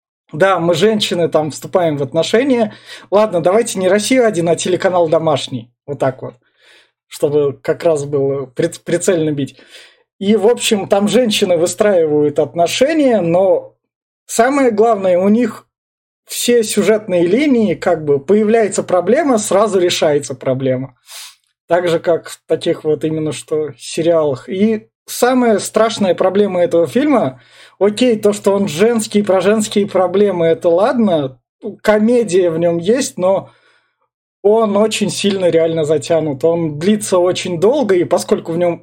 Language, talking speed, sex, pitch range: Russian, 140 wpm, male, 165-215 Hz